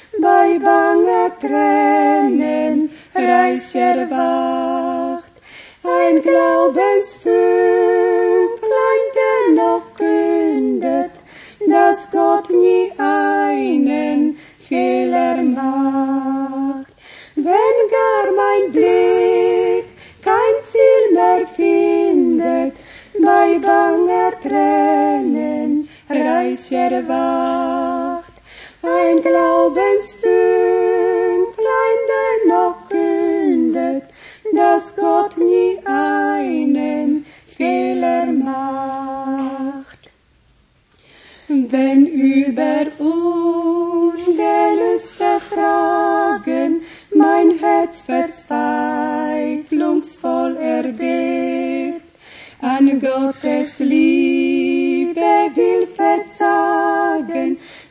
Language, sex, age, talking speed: Polish, female, 30-49, 55 wpm